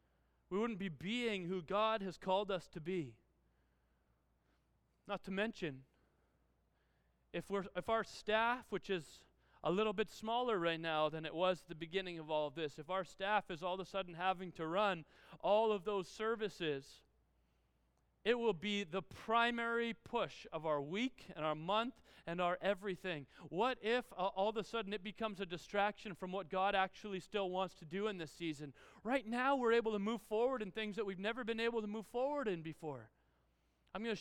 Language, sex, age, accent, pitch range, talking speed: Dutch, male, 30-49, American, 160-215 Hz, 195 wpm